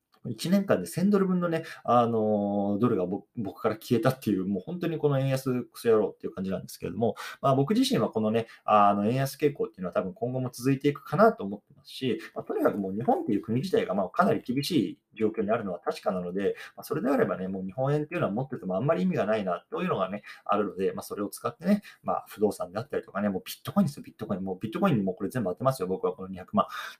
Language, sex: Japanese, male